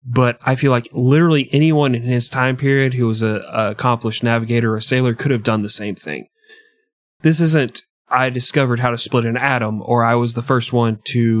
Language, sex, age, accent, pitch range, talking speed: English, male, 30-49, American, 115-135 Hz, 215 wpm